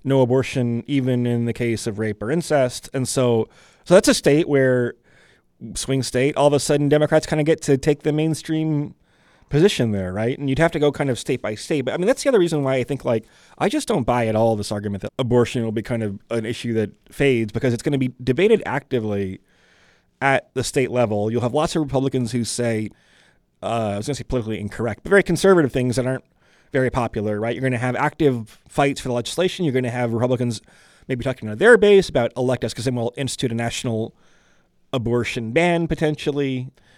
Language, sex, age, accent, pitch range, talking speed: English, male, 30-49, American, 115-150 Hz, 225 wpm